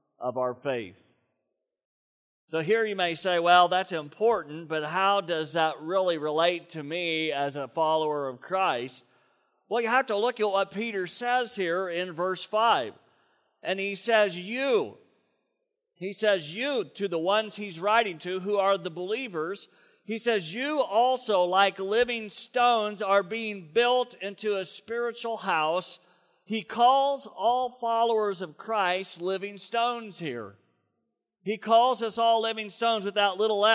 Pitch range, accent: 160-220 Hz, American